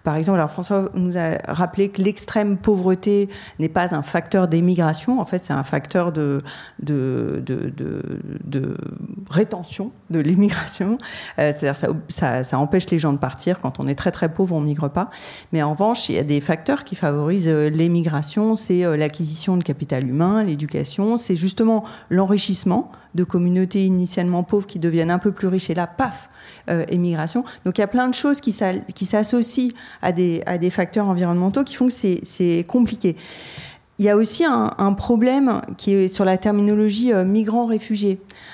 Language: French